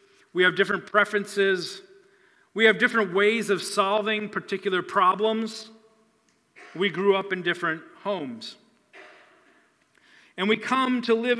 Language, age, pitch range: English, 40-59, 165-225 Hz